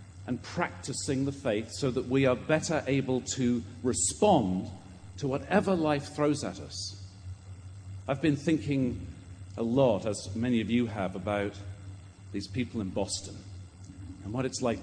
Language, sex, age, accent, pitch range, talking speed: English, male, 50-69, British, 95-115 Hz, 150 wpm